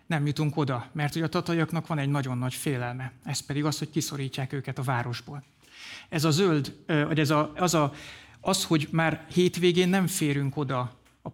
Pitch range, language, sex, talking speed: 135-155 Hz, Hungarian, male, 185 wpm